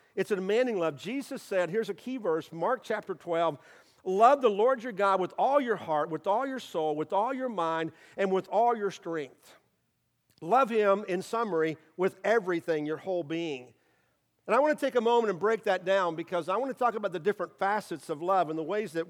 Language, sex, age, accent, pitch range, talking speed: English, male, 50-69, American, 170-230 Hz, 220 wpm